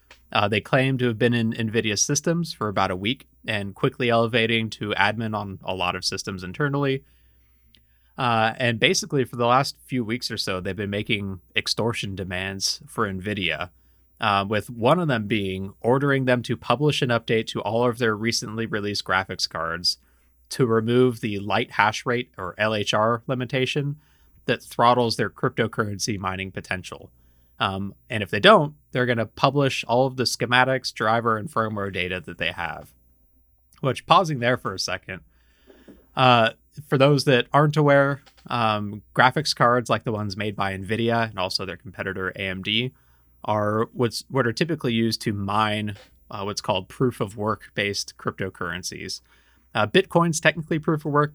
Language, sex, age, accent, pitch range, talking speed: English, male, 20-39, American, 95-125 Hz, 170 wpm